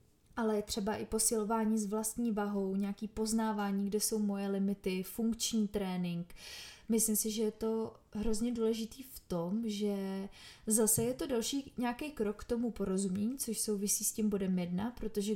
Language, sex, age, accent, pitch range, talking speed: Czech, female, 20-39, native, 200-220 Hz, 160 wpm